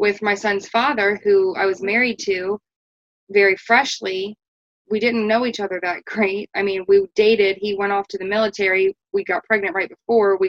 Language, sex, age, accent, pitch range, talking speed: English, female, 20-39, American, 195-235 Hz, 195 wpm